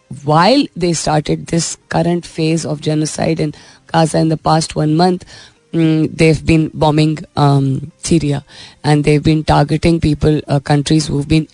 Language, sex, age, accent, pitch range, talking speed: Hindi, female, 20-39, native, 150-180 Hz, 150 wpm